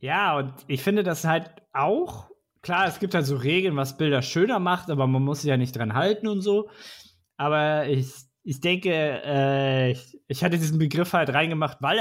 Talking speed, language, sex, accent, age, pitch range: 200 wpm, German, male, German, 20-39, 125-155 Hz